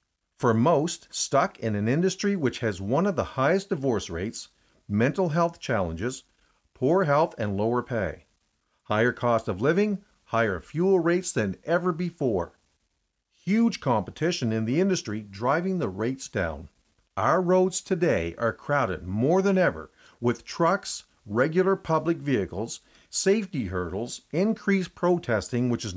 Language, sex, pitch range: English, male, 105-170 Hz